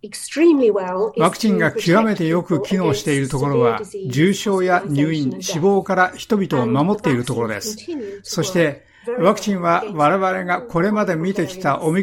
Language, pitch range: Japanese, 145-200 Hz